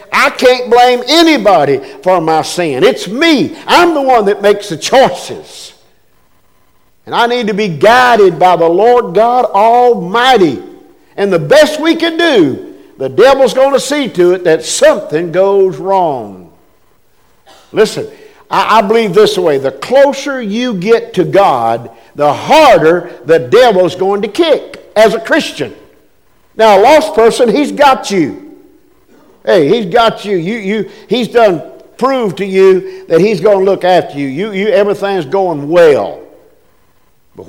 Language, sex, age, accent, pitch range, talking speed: English, male, 50-69, American, 170-260 Hz, 150 wpm